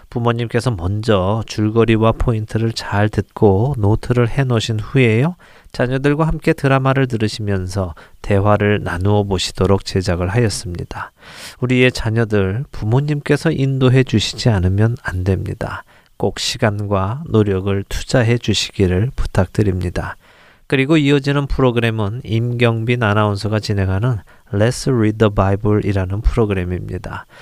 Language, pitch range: Korean, 100-125 Hz